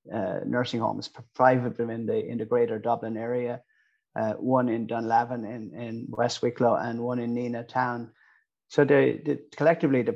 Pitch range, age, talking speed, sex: 115-125 Hz, 30-49, 185 wpm, male